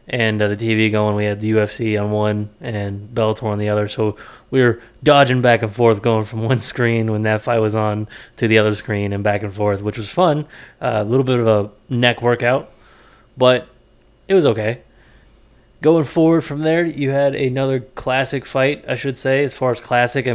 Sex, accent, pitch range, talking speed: male, American, 110-125 Hz, 210 wpm